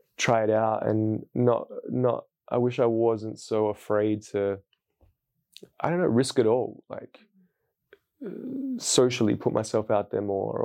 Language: English